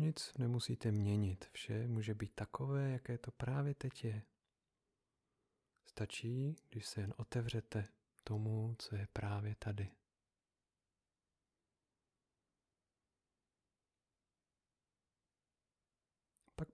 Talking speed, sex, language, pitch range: 80 wpm, male, Czech, 105-120 Hz